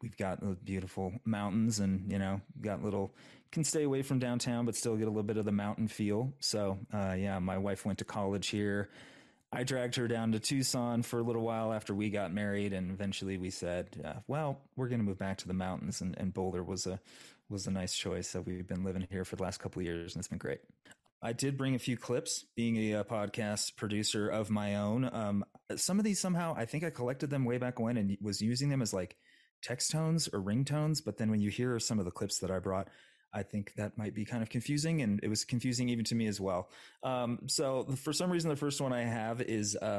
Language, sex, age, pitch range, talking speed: English, male, 30-49, 100-125 Hz, 245 wpm